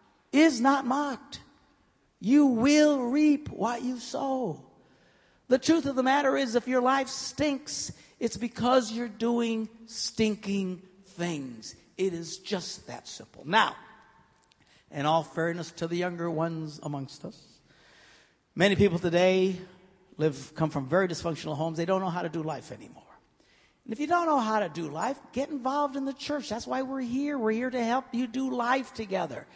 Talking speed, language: 170 wpm, English